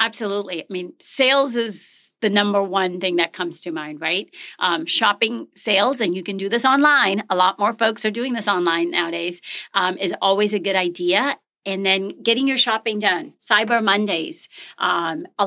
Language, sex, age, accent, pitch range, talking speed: English, female, 40-59, American, 185-235 Hz, 185 wpm